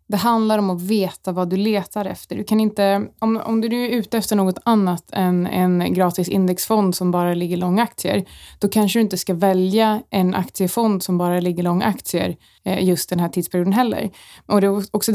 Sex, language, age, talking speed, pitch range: female, Swedish, 20-39, 185 wpm, 180-215 Hz